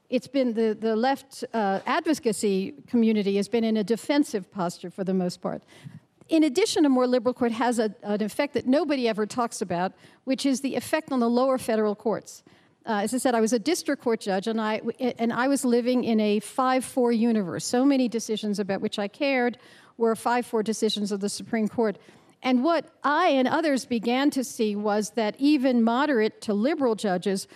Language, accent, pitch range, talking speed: English, American, 210-255 Hz, 200 wpm